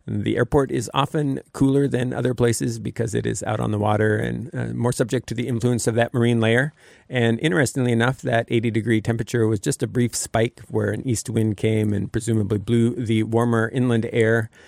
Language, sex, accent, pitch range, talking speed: English, male, American, 105-120 Hz, 205 wpm